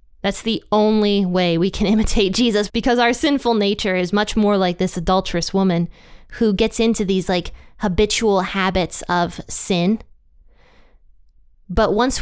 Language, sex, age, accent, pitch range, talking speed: English, female, 20-39, American, 180-220 Hz, 145 wpm